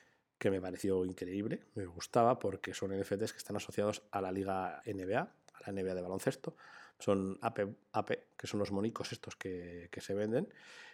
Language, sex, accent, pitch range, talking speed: Spanish, male, Spanish, 95-110 Hz, 180 wpm